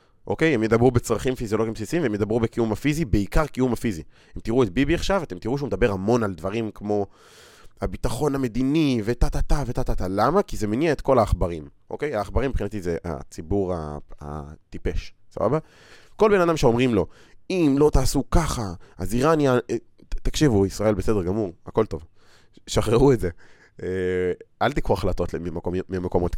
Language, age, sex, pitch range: Hebrew, 20-39, male, 90-125 Hz